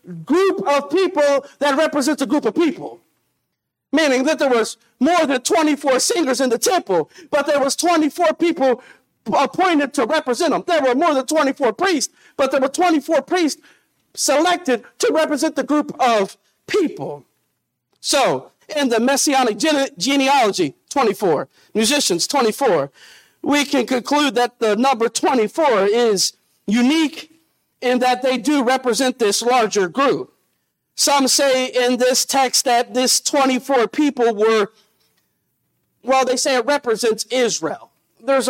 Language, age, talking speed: English, 50-69, 140 wpm